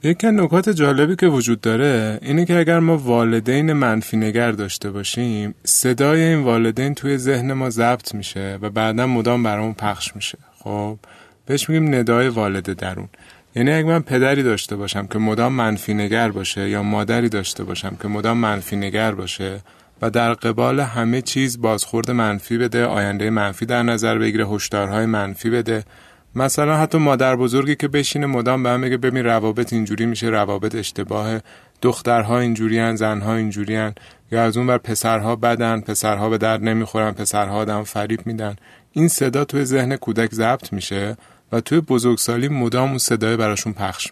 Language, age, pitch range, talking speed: Persian, 30-49, 105-130 Hz, 165 wpm